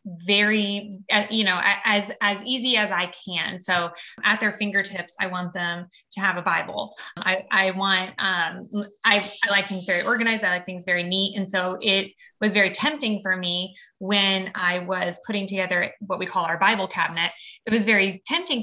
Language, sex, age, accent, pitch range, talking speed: English, female, 20-39, American, 185-225 Hz, 190 wpm